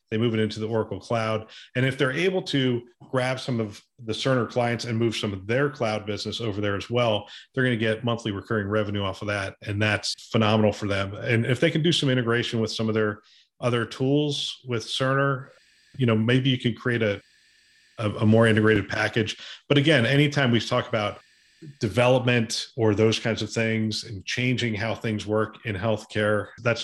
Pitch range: 105-125 Hz